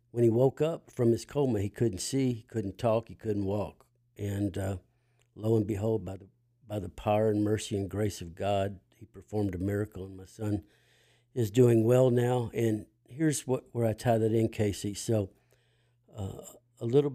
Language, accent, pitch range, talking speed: English, American, 100-120 Hz, 195 wpm